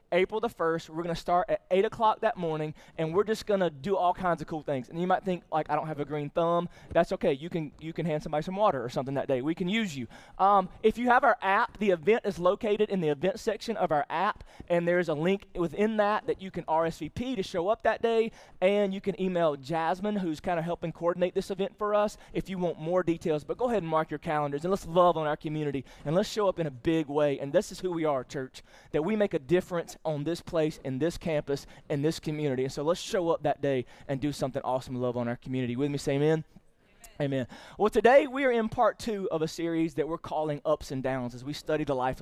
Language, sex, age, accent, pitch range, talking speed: English, male, 20-39, American, 145-190 Hz, 265 wpm